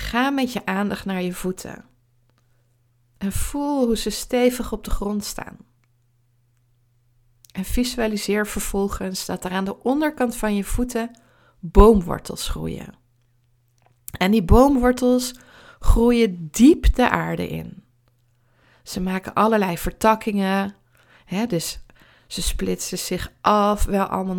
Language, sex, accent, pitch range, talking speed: Dutch, female, Dutch, 165-220 Hz, 120 wpm